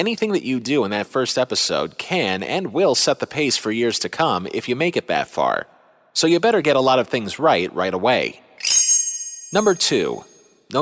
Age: 30-49